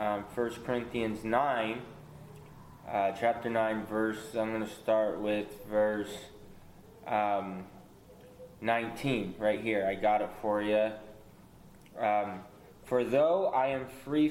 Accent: American